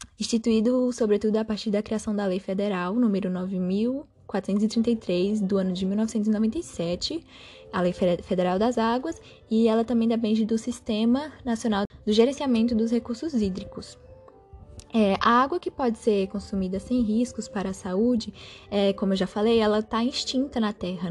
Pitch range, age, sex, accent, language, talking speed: 200-250 Hz, 10-29, female, Brazilian, Portuguese, 145 wpm